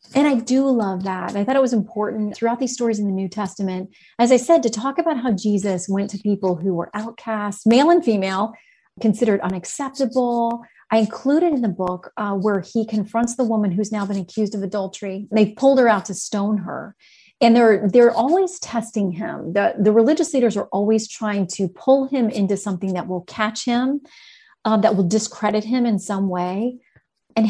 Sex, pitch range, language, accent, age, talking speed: female, 195-250 Hz, English, American, 30-49, 200 wpm